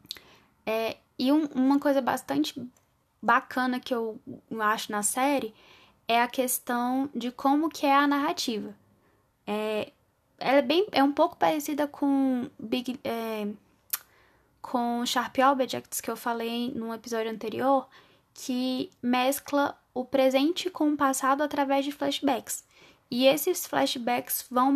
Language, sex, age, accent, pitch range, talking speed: Portuguese, female, 10-29, Brazilian, 235-285 Hz, 135 wpm